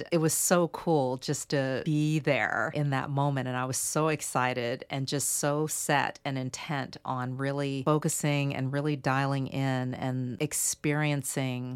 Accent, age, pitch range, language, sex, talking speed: American, 40-59, 135-155 Hz, English, female, 160 wpm